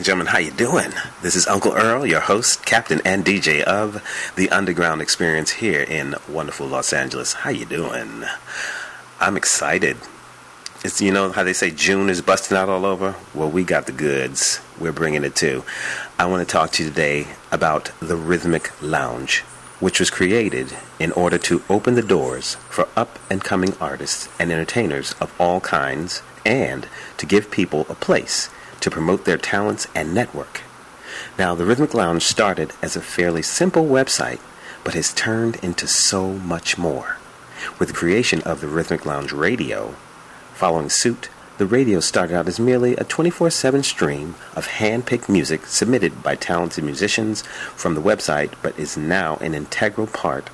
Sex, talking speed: male, 170 wpm